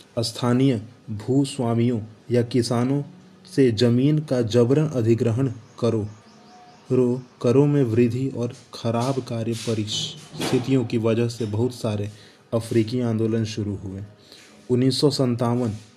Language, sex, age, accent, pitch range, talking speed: Hindi, male, 20-39, native, 110-125 Hz, 105 wpm